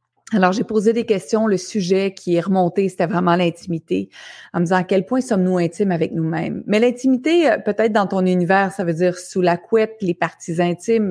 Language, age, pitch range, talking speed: French, 30-49, 175-225 Hz, 210 wpm